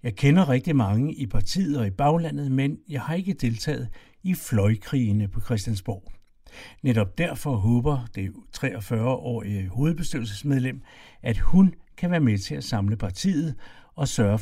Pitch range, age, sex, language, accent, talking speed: 110-140 Hz, 60-79, male, Danish, native, 145 wpm